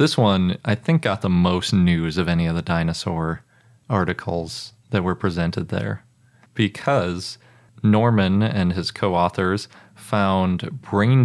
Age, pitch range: 30-49, 90-120 Hz